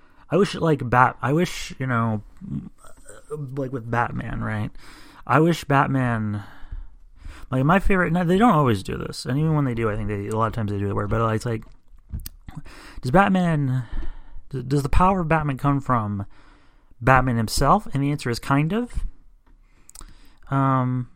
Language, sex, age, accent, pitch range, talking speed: English, male, 30-49, American, 105-140 Hz, 180 wpm